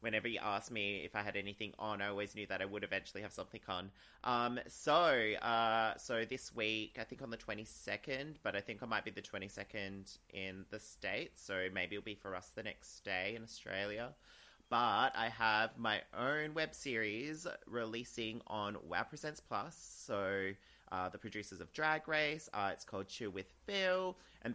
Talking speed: 195 wpm